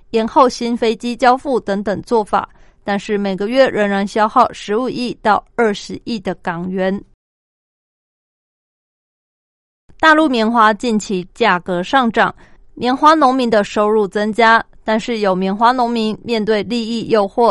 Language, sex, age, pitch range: Chinese, female, 20-39, 205-250 Hz